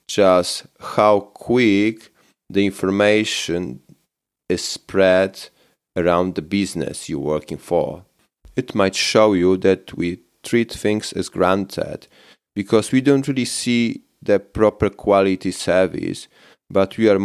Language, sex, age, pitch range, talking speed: English, male, 30-49, 90-105 Hz, 120 wpm